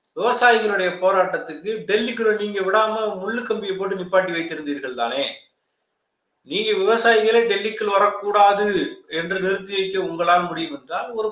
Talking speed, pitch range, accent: 115 wpm, 170-220 Hz, native